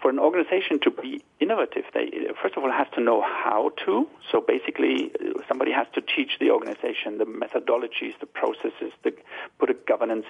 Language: English